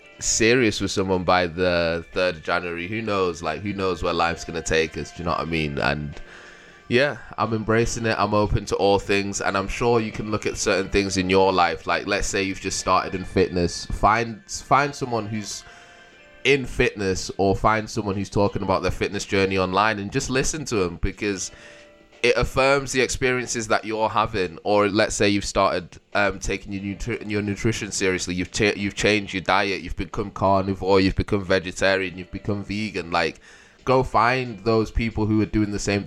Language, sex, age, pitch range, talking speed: English, male, 20-39, 90-110 Hz, 200 wpm